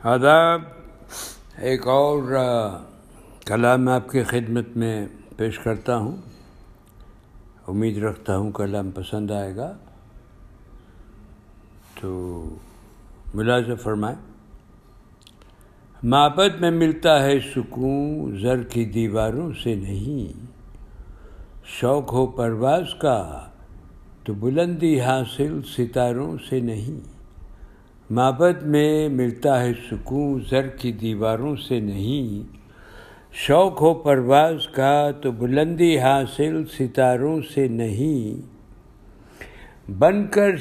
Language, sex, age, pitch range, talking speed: Urdu, male, 60-79, 105-145 Hz, 90 wpm